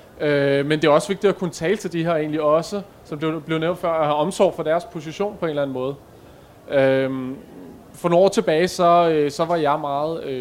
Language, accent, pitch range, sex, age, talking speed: Danish, native, 145-190 Hz, male, 20-39, 220 wpm